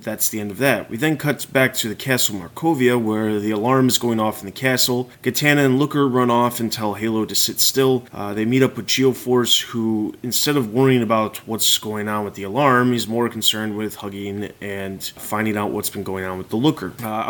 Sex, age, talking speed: male, 20-39, 230 wpm